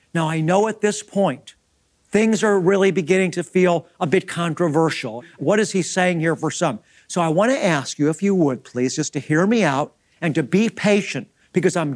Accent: American